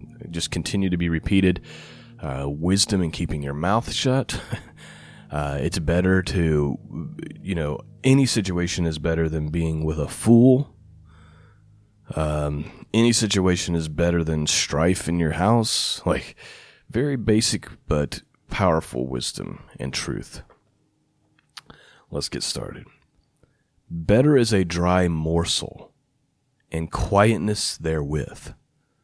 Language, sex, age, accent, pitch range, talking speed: English, male, 30-49, American, 80-105 Hz, 115 wpm